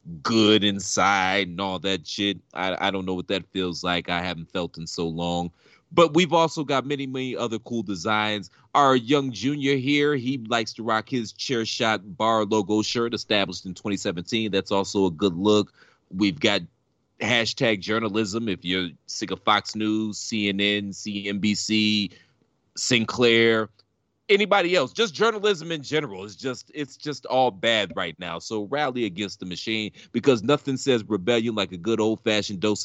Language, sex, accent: English, male, American